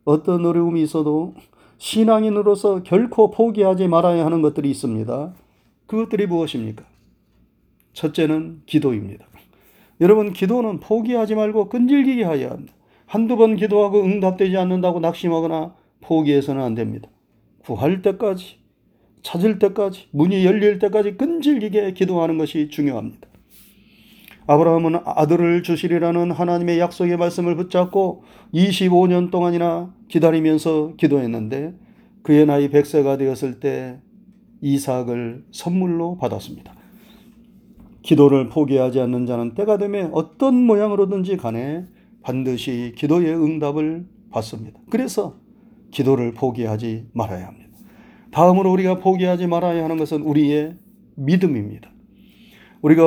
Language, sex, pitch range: Korean, male, 150-205 Hz